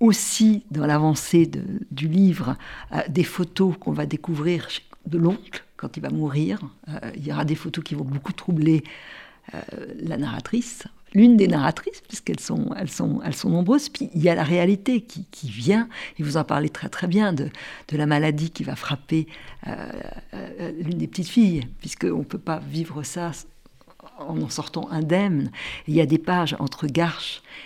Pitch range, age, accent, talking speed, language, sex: 155-195 Hz, 60-79, French, 190 wpm, French, female